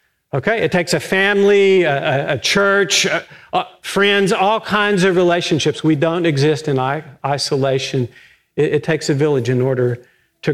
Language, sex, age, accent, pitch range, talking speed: English, male, 50-69, American, 145-175 Hz, 160 wpm